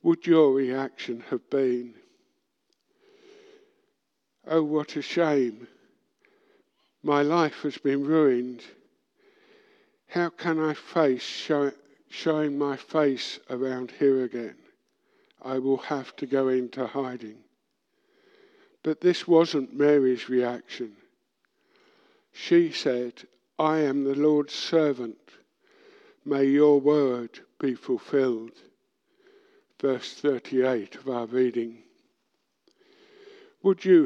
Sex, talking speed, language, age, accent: male, 95 wpm, English, 60-79, British